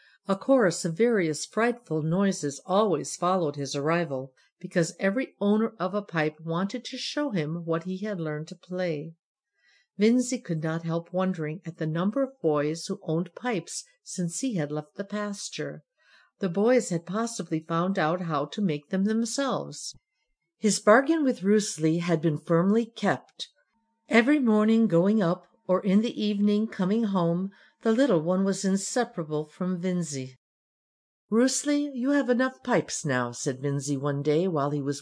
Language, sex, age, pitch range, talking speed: English, female, 60-79, 155-215 Hz, 160 wpm